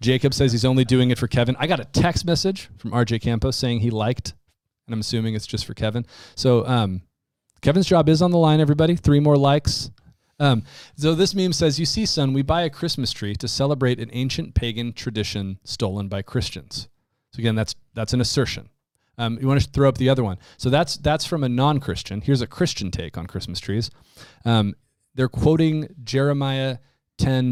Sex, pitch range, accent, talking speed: male, 105-135 Hz, American, 205 wpm